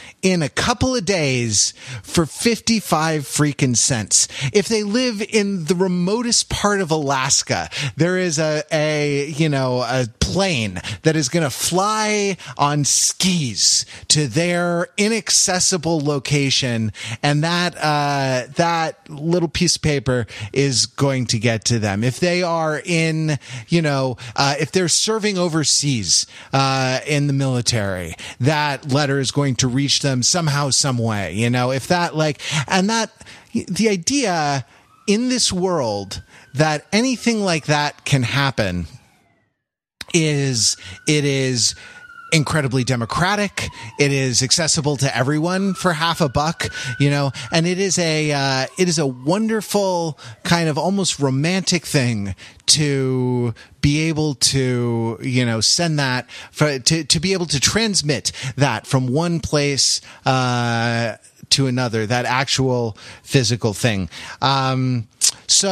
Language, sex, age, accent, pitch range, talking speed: English, male, 30-49, American, 125-170 Hz, 140 wpm